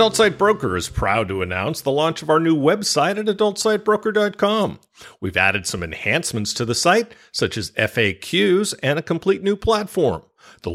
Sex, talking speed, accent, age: male, 175 wpm, American, 50-69